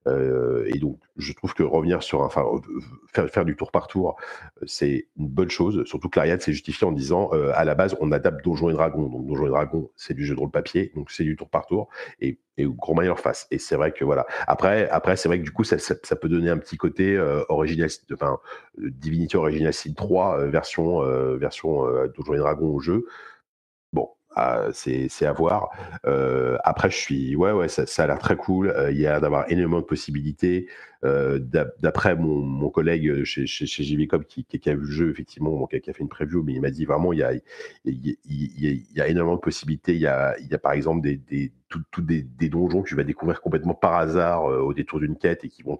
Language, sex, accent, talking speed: French, male, French, 245 wpm